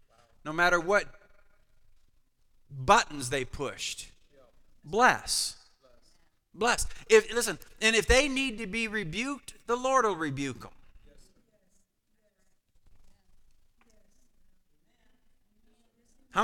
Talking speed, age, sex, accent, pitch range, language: 85 wpm, 40-59, male, American, 205-290 Hz, English